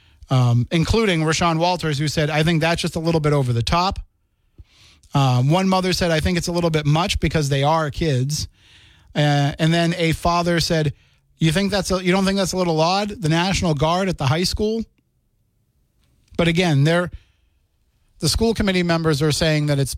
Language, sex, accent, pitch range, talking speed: English, male, American, 130-175 Hz, 200 wpm